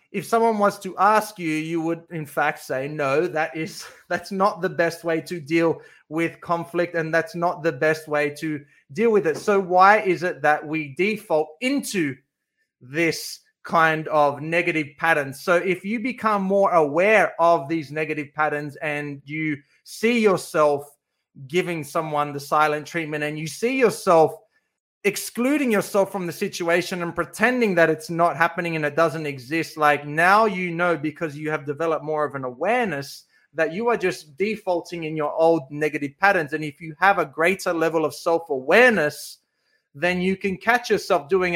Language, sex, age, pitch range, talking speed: English, male, 30-49, 155-195 Hz, 175 wpm